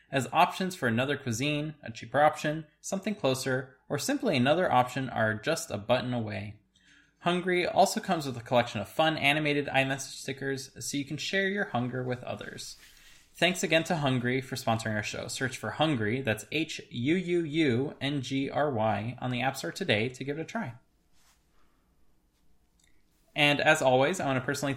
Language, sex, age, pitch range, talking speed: English, male, 20-39, 120-145 Hz, 165 wpm